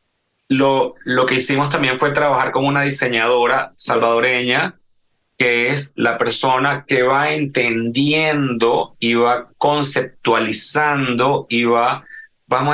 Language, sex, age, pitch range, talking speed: English, male, 30-49, 125-150 Hz, 115 wpm